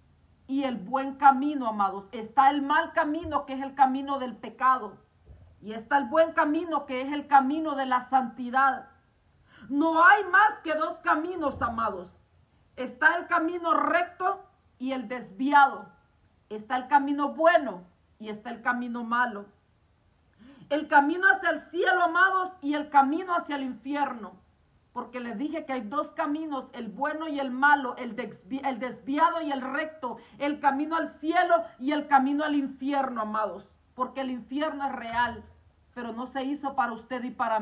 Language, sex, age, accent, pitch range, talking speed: Spanish, female, 40-59, Mexican, 245-305 Hz, 165 wpm